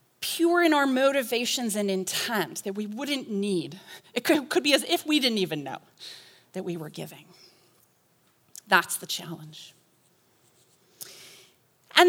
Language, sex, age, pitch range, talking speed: English, female, 30-49, 210-310 Hz, 140 wpm